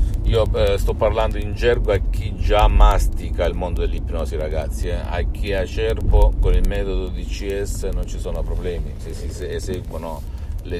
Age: 50-69